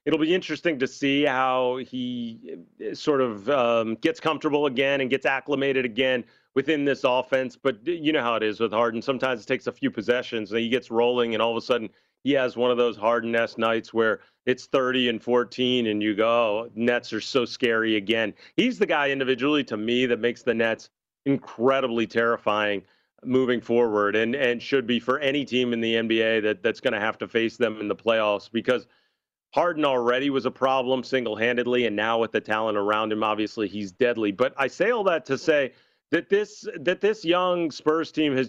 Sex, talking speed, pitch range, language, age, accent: male, 205 wpm, 115-140 Hz, English, 40-59, American